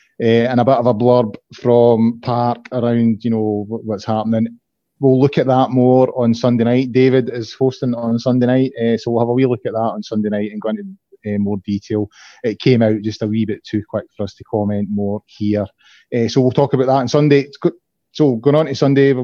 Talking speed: 235 wpm